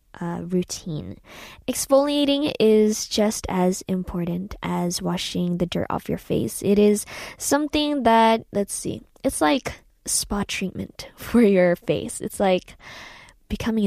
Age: 10-29